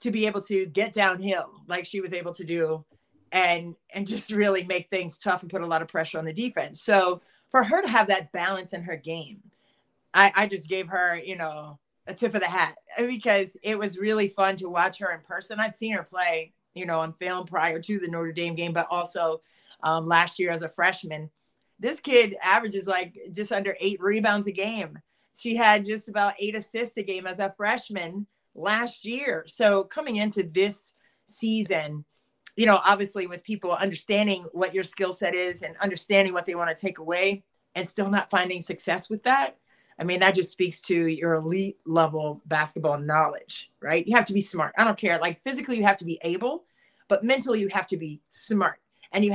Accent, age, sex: American, 30-49, female